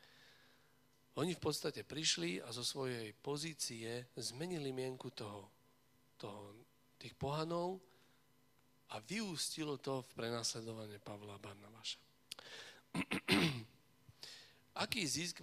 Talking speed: 90 wpm